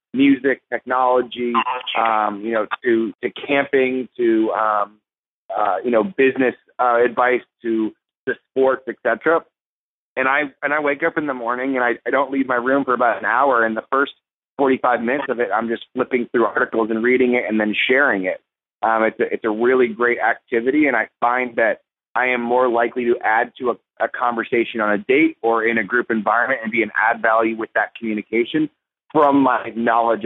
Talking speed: 200 wpm